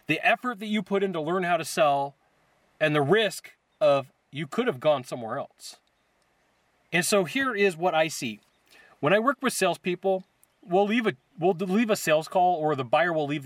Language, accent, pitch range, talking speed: English, American, 145-200 Hz, 205 wpm